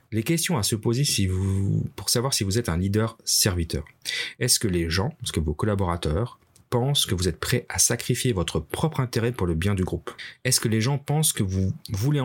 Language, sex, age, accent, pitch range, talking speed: French, male, 30-49, French, 100-130 Hz, 225 wpm